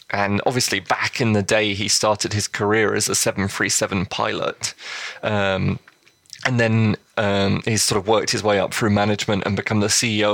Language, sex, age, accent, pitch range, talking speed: English, male, 20-39, British, 100-115 Hz, 180 wpm